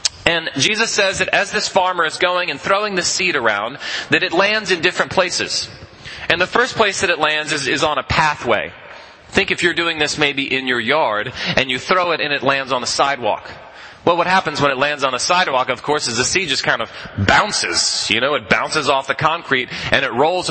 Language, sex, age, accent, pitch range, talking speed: English, male, 30-49, American, 145-190 Hz, 230 wpm